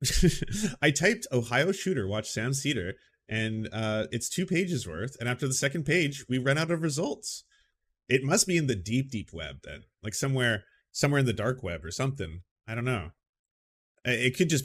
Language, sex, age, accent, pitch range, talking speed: English, male, 30-49, American, 105-140 Hz, 195 wpm